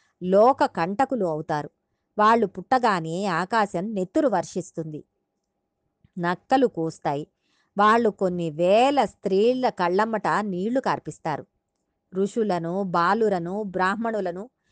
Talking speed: 80 wpm